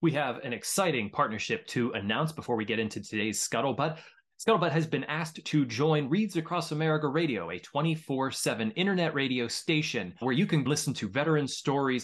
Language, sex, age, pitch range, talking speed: English, male, 20-39, 120-165 Hz, 175 wpm